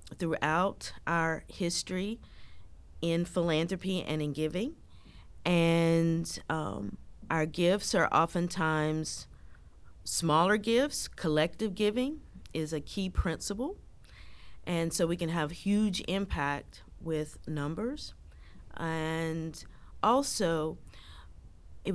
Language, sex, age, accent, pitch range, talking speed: English, female, 40-59, American, 145-175 Hz, 95 wpm